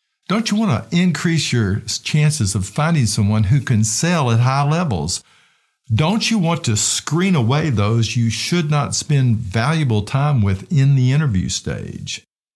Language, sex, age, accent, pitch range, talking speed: English, male, 50-69, American, 105-145 Hz, 160 wpm